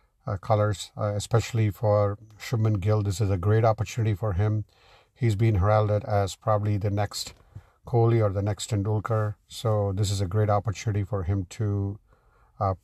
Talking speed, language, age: 170 wpm, English, 50-69